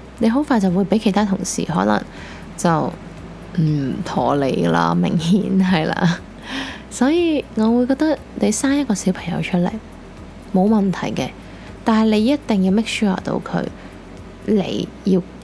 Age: 10-29